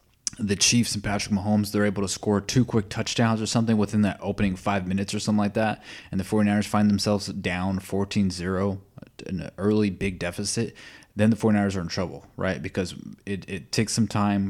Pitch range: 95-110 Hz